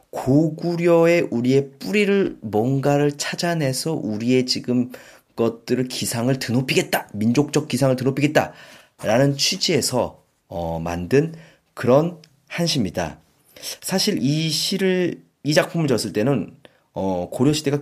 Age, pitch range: 30-49, 110-160 Hz